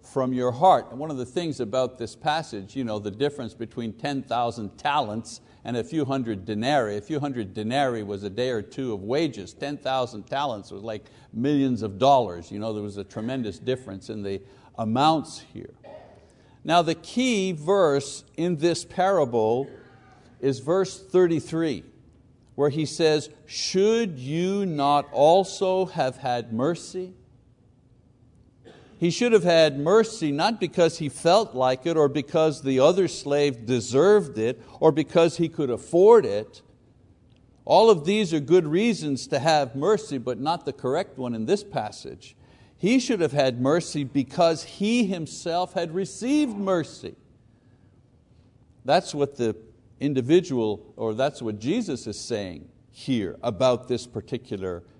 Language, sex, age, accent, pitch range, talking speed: English, male, 60-79, American, 120-170 Hz, 145 wpm